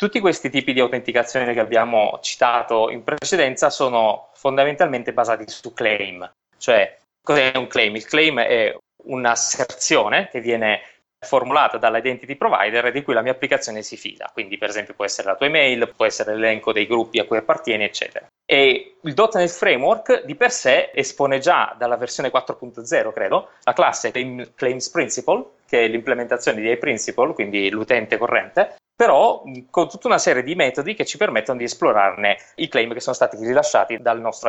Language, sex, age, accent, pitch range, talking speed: Italian, male, 20-39, native, 115-140 Hz, 170 wpm